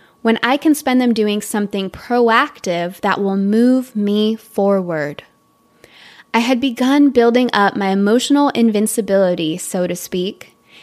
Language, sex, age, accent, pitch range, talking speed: English, female, 20-39, American, 200-260 Hz, 135 wpm